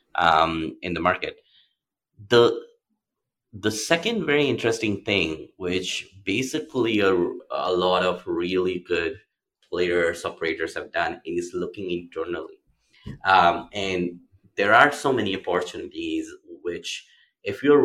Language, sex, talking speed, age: English, male, 120 wpm, 30-49